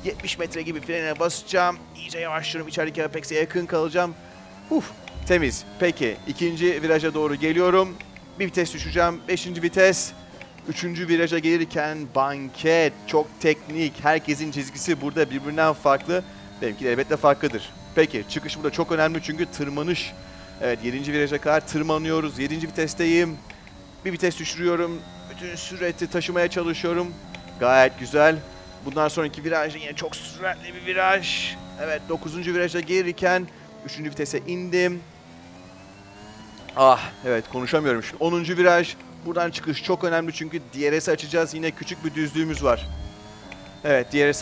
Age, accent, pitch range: 30-49, native, 140-170 Hz